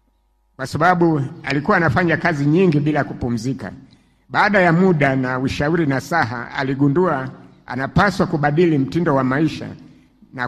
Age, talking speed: 60-79, 120 wpm